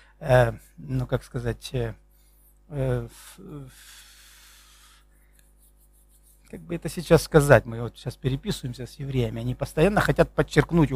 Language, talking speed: Russian, 135 wpm